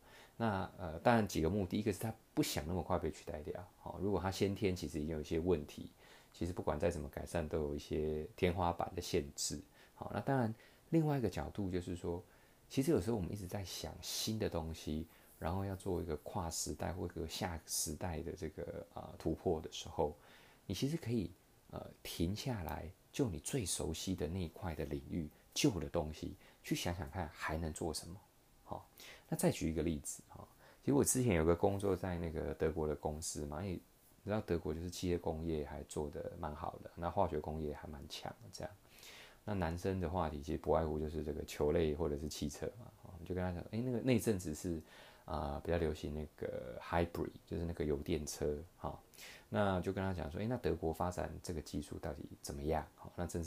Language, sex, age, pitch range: Chinese, male, 30-49, 80-95 Hz